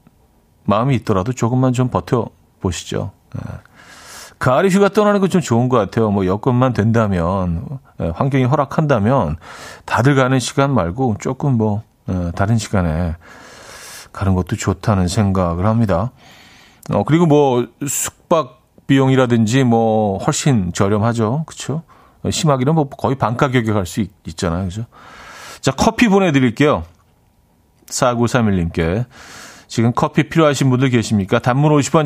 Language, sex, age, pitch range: Korean, male, 40-59, 100-150 Hz